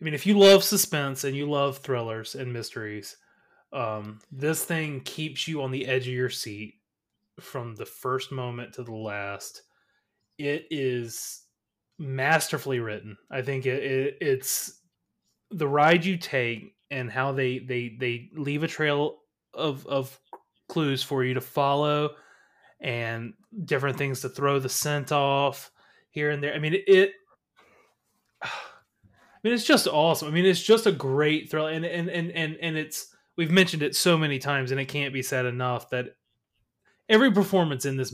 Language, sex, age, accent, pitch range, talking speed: English, male, 20-39, American, 130-165 Hz, 170 wpm